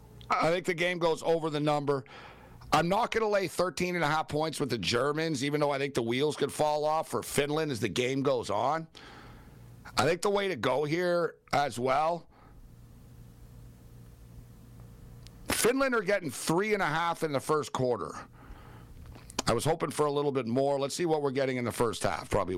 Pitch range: 120-160 Hz